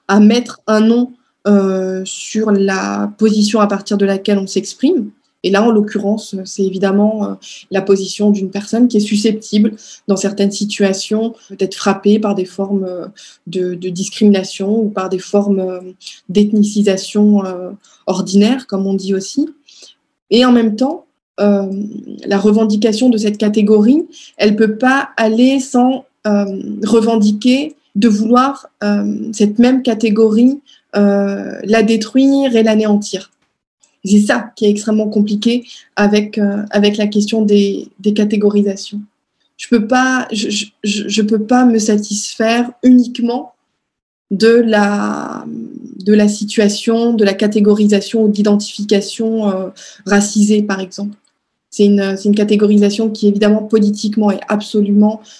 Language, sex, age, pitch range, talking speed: French, female, 20-39, 200-230 Hz, 140 wpm